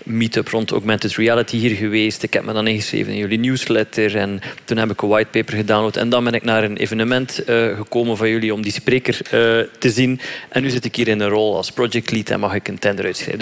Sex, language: male, Dutch